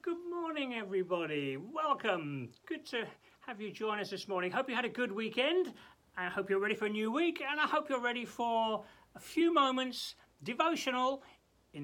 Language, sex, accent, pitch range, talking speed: English, male, British, 160-245 Hz, 190 wpm